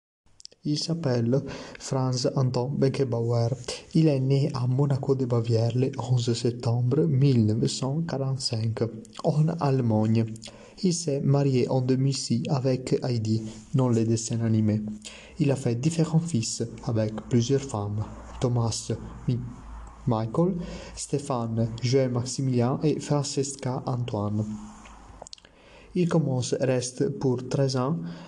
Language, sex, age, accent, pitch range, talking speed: French, male, 30-49, Italian, 115-140 Hz, 105 wpm